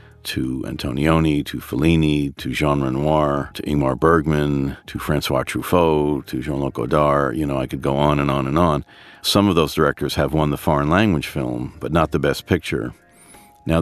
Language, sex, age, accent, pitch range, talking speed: English, male, 50-69, American, 70-80 Hz, 180 wpm